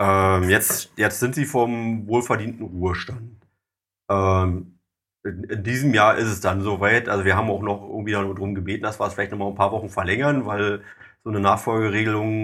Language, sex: German, male